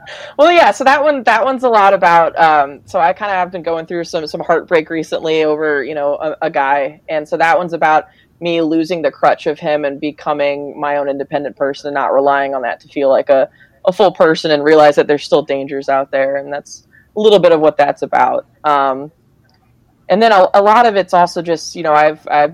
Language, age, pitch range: English, 20-39, 145-175 Hz